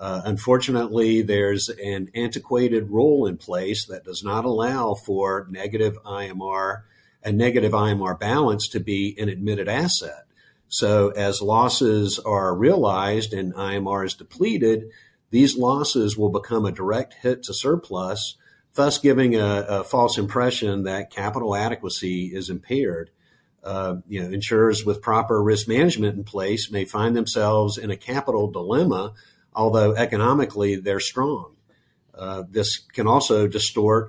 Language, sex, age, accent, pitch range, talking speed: English, male, 50-69, American, 100-115 Hz, 140 wpm